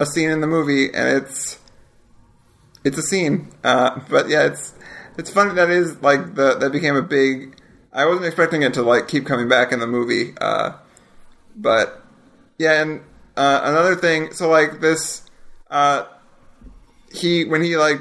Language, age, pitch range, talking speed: English, 30-49, 130-160 Hz, 175 wpm